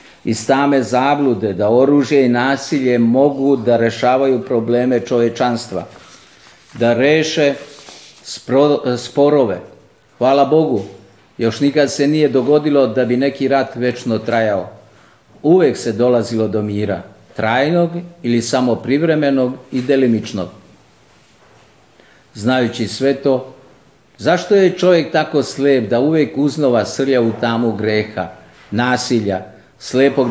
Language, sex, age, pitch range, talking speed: Croatian, male, 50-69, 110-140 Hz, 115 wpm